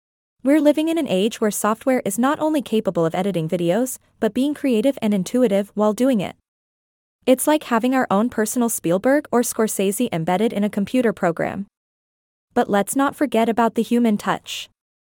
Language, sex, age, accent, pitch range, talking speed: English, female, 20-39, American, 205-250 Hz, 175 wpm